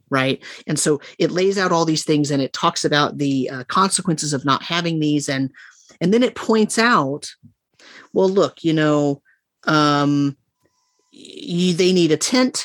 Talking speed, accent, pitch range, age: 165 wpm, American, 145-180 Hz, 30-49